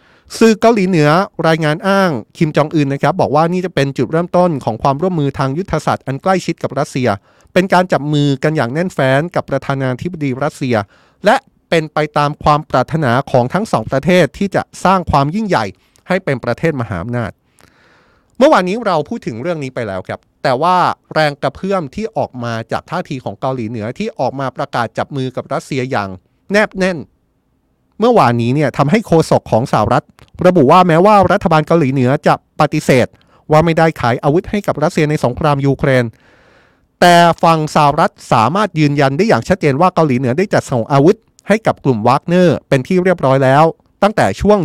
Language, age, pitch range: Thai, 20-39, 130-175 Hz